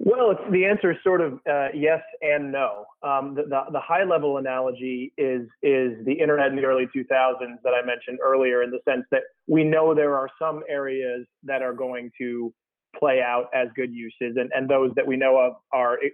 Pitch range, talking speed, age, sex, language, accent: 130-150 Hz, 210 wpm, 30-49, male, English, American